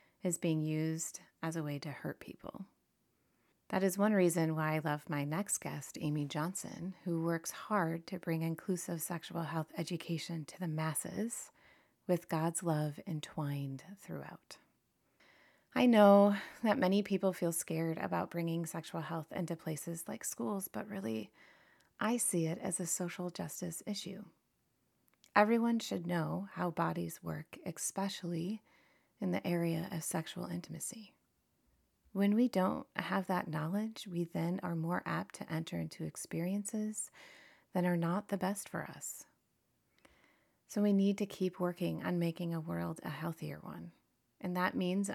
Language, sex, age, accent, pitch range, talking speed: English, female, 30-49, American, 160-195 Hz, 150 wpm